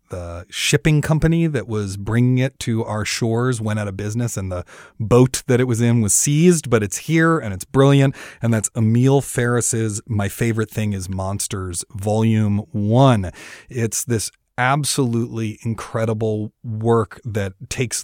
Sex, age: male, 30-49